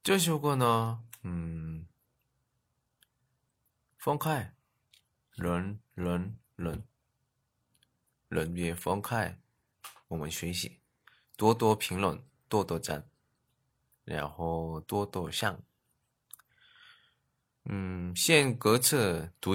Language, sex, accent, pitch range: Chinese, male, native, 90-125 Hz